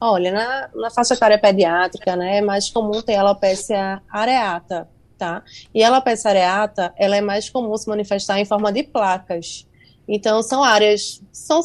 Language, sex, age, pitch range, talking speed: Portuguese, female, 20-39, 195-225 Hz, 165 wpm